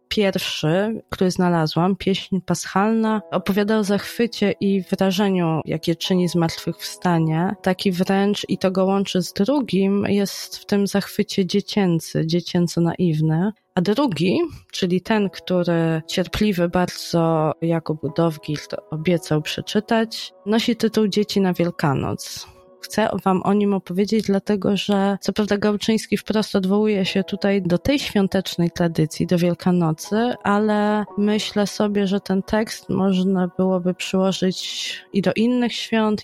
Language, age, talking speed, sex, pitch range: Polish, 20-39, 130 wpm, female, 175-200 Hz